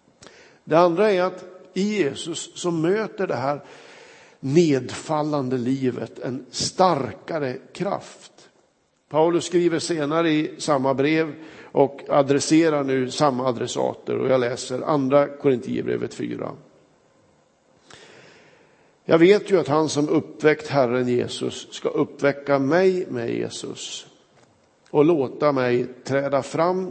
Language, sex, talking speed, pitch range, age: Swedish, male, 115 wpm, 125-160 Hz, 50-69